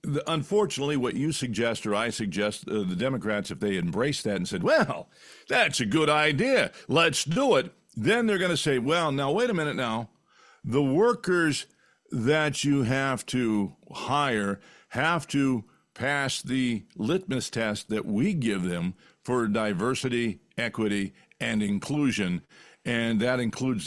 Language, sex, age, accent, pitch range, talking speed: English, male, 50-69, American, 115-150 Hz, 150 wpm